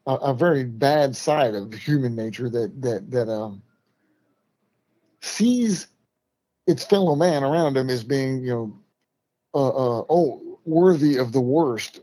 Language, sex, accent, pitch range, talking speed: English, male, American, 120-145 Hz, 145 wpm